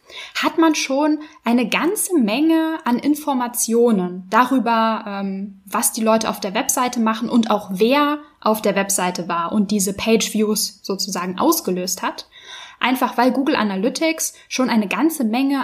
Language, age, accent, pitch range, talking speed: German, 10-29, German, 210-265 Hz, 145 wpm